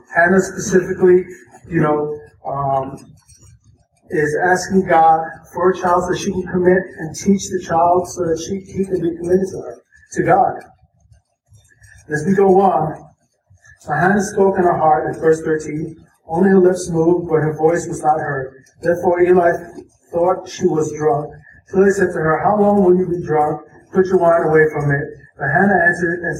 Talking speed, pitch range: 185 wpm, 150-185 Hz